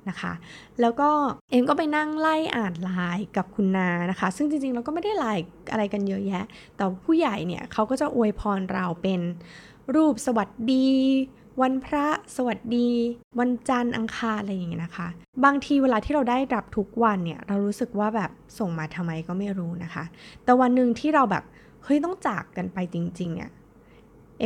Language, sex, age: Thai, female, 20-39